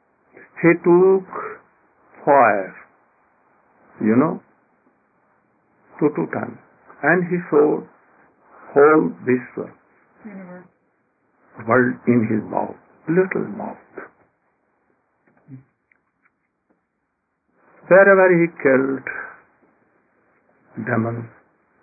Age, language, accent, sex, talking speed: 60-79, English, Indian, male, 65 wpm